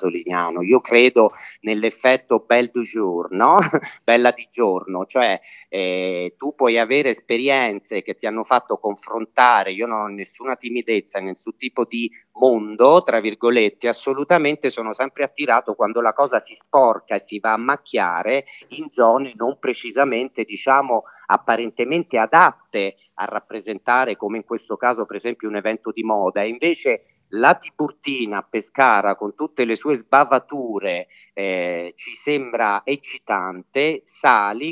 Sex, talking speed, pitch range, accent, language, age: male, 140 wpm, 105-135 Hz, native, Italian, 40-59